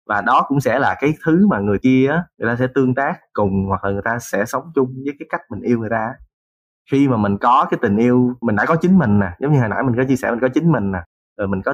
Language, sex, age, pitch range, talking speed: Vietnamese, male, 20-39, 105-140 Hz, 300 wpm